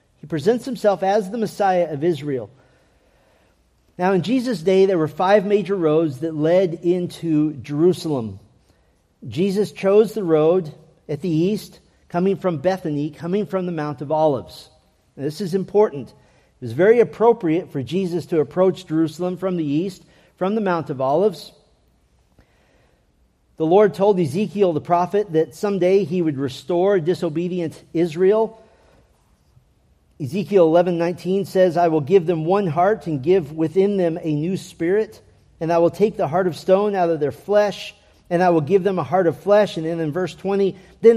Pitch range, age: 160-200 Hz, 40-59